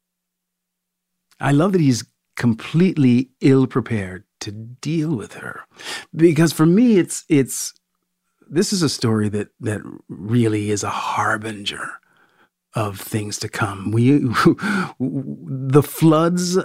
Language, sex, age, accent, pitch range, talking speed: English, male, 50-69, American, 100-130 Hz, 120 wpm